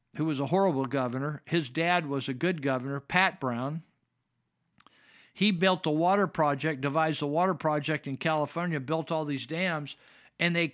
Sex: male